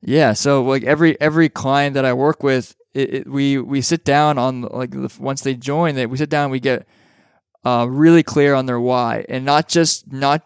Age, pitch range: 20-39, 130-150 Hz